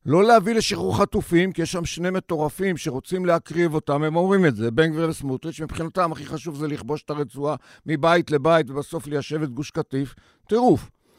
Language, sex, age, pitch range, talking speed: Hebrew, male, 50-69, 145-195 Hz, 180 wpm